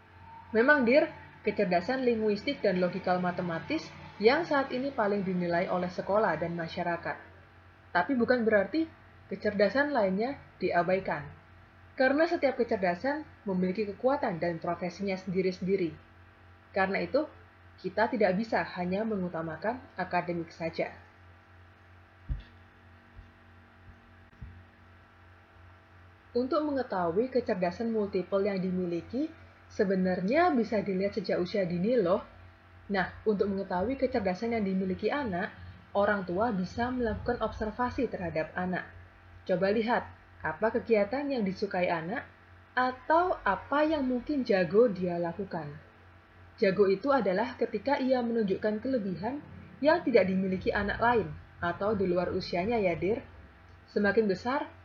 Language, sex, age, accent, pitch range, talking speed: Indonesian, female, 30-49, native, 170-235 Hz, 110 wpm